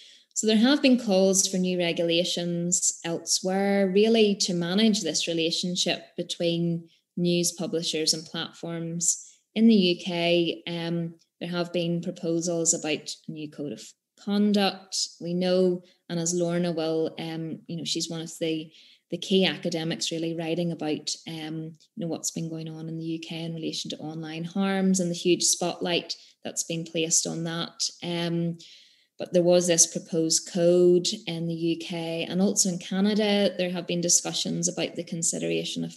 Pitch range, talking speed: 165-180 Hz, 155 wpm